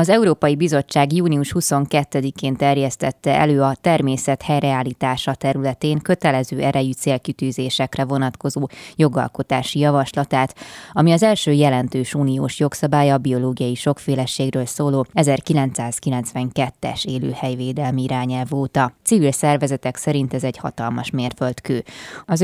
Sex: female